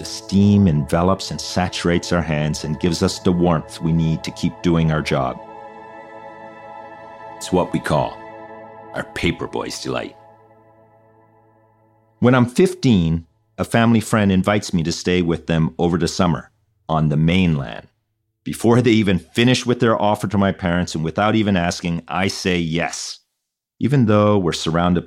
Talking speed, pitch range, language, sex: 160 wpm, 80-110 Hz, English, male